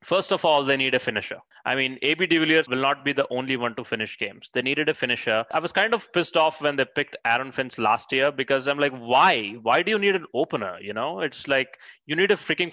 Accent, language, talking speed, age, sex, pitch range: Indian, English, 265 wpm, 20-39, male, 120-170 Hz